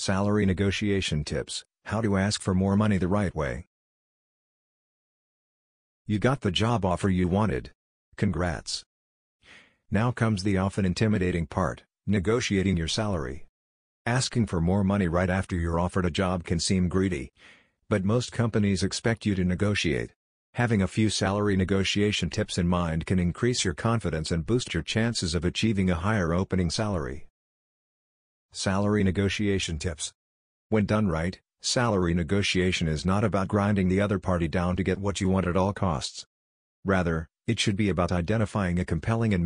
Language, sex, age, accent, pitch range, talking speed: English, male, 50-69, American, 85-105 Hz, 160 wpm